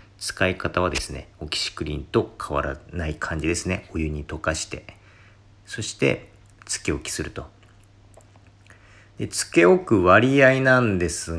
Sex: male